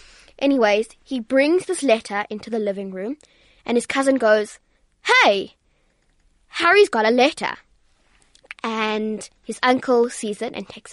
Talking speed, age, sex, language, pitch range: 135 wpm, 20-39, female, English, 215-260 Hz